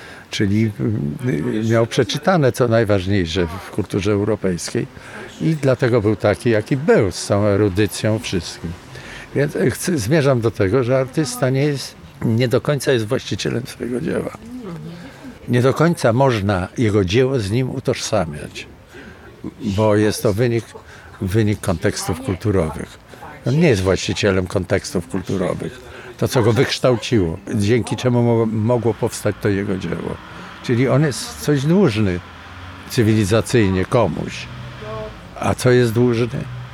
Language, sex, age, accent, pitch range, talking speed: Polish, male, 60-79, native, 100-125 Hz, 130 wpm